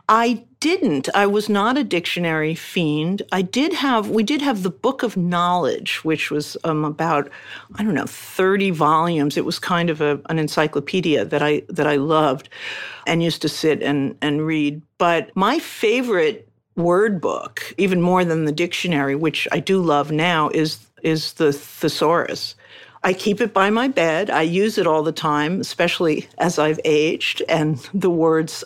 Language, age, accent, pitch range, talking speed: English, 50-69, American, 155-205 Hz, 175 wpm